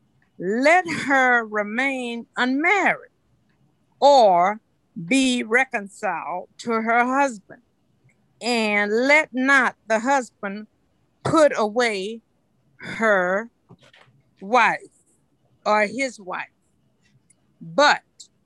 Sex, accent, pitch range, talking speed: female, American, 205-275 Hz, 75 wpm